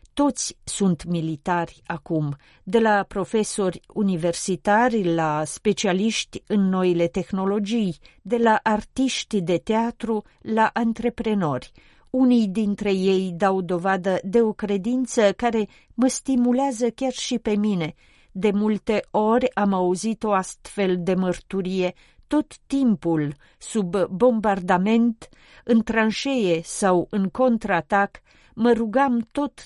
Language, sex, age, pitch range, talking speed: Romanian, female, 40-59, 185-235 Hz, 115 wpm